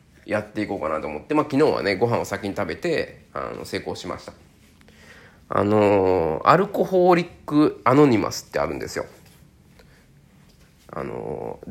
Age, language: 20-39, Japanese